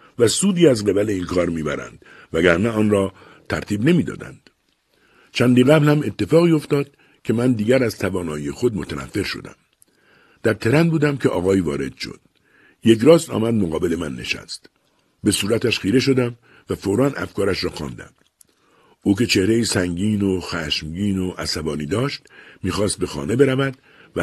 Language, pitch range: Persian, 90-130 Hz